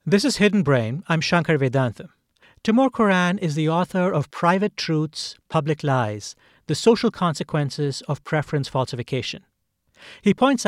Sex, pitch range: male, 140-195 Hz